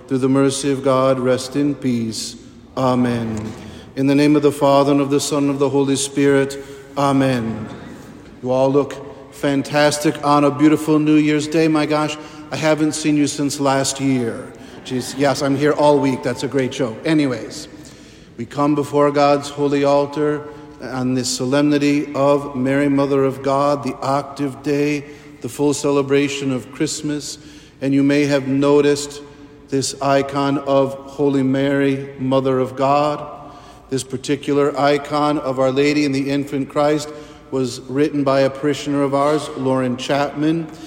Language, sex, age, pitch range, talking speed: English, male, 50-69, 135-145 Hz, 160 wpm